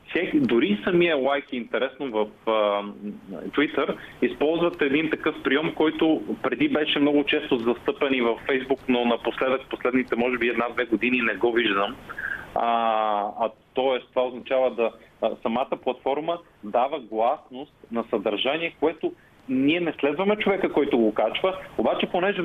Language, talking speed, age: Bulgarian, 135 wpm, 30-49